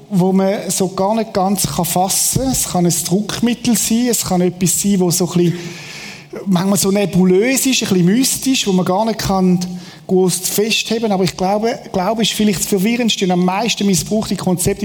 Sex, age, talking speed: male, 40-59, 185 wpm